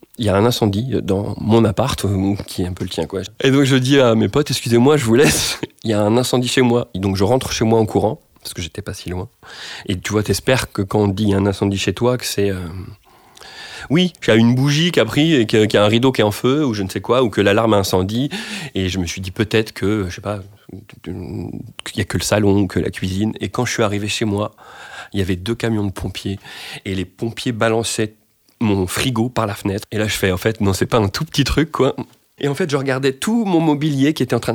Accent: French